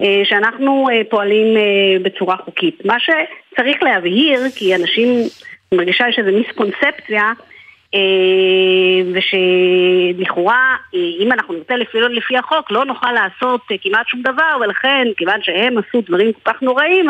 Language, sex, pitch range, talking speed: Hebrew, female, 195-275 Hz, 115 wpm